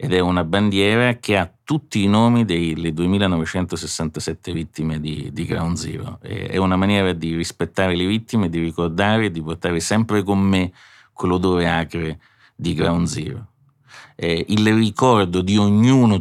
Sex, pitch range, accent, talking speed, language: male, 80-100 Hz, native, 150 wpm, Italian